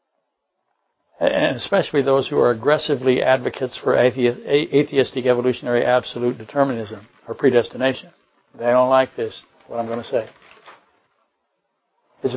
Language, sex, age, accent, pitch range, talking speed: English, male, 60-79, American, 125-145 Hz, 115 wpm